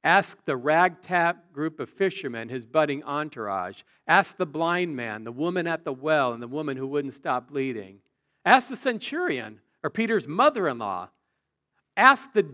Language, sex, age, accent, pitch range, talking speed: English, male, 50-69, American, 125-195 Hz, 160 wpm